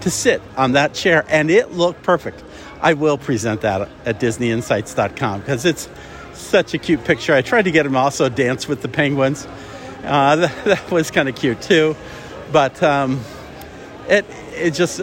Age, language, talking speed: 50-69, English, 170 wpm